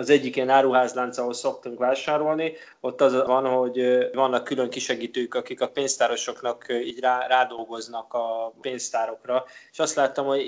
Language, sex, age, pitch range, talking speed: Hungarian, male, 20-39, 120-135 Hz, 145 wpm